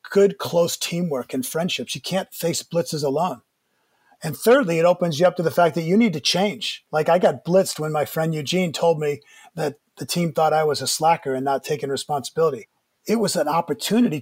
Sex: male